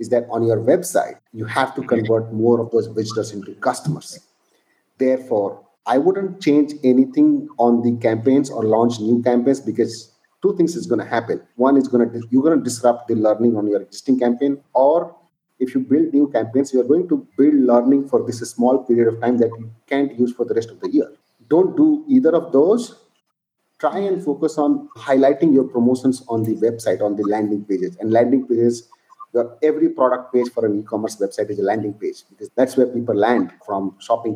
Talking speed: 205 wpm